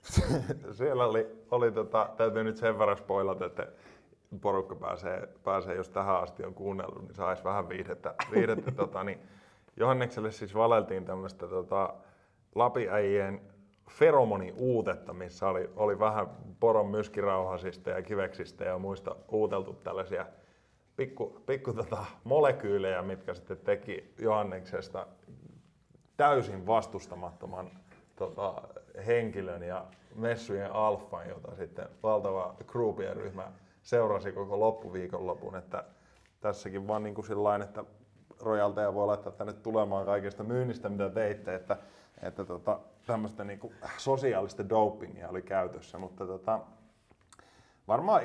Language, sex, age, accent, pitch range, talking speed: Finnish, male, 20-39, native, 95-110 Hz, 115 wpm